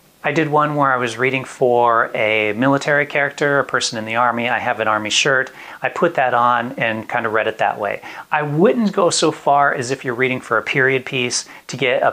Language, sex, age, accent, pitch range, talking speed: English, male, 40-59, American, 115-140 Hz, 235 wpm